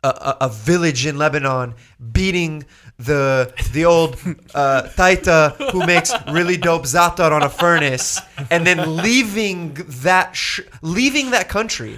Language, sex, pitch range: English, male, 130-180 Hz